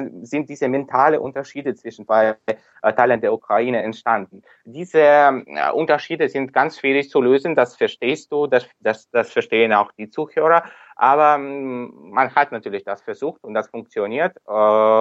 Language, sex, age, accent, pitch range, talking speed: German, male, 20-39, Austrian, 110-135 Hz, 145 wpm